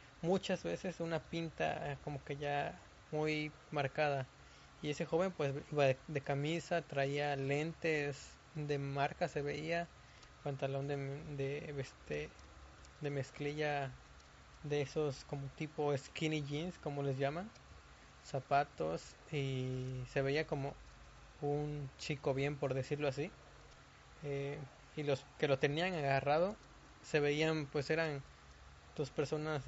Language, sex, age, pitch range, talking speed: Spanish, male, 20-39, 130-150 Hz, 125 wpm